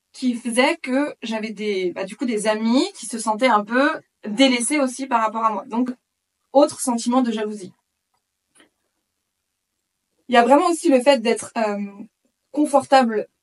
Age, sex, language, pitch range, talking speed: 20-39, female, French, 220-275 Hz, 160 wpm